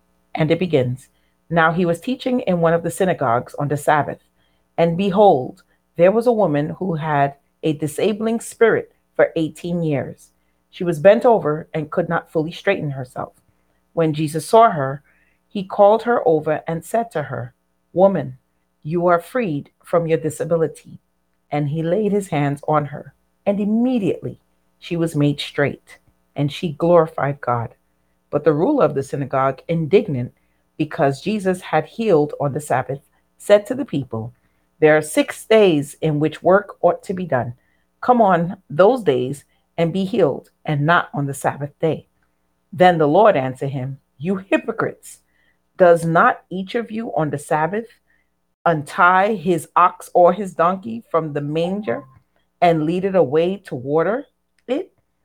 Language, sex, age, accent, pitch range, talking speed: English, female, 40-59, American, 135-185 Hz, 160 wpm